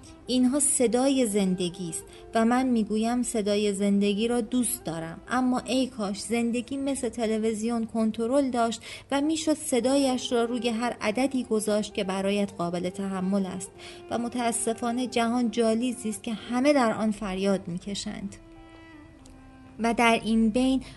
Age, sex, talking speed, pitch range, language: 30-49, female, 135 wpm, 200-240 Hz, Persian